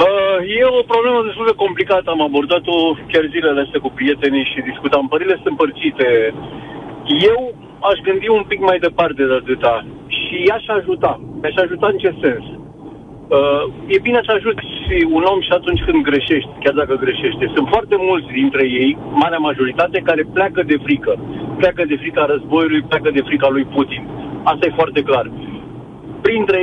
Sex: male